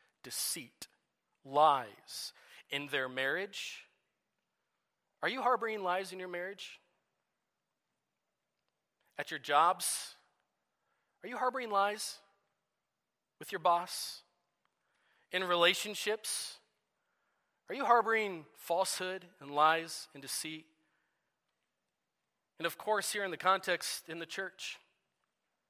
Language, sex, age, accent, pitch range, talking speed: English, male, 40-59, American, 170-215 Hz, 100 wpm